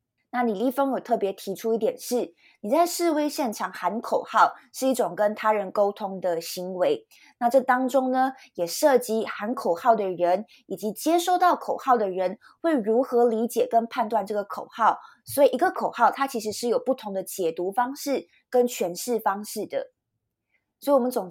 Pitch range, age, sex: 205-270 Hz, 20-39, female